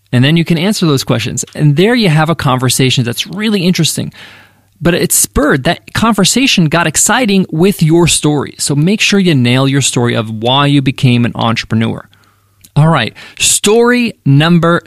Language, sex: English, male